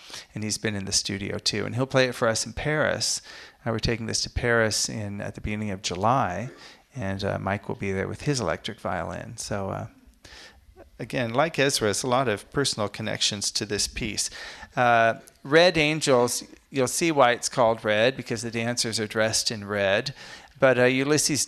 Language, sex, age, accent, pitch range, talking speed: English, male, 40-59, American, 100-130 Hz, 195 wpm